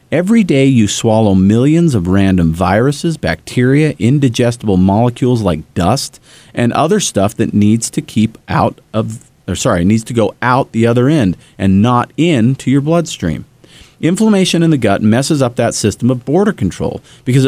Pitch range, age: 105-150 Hz, 40-59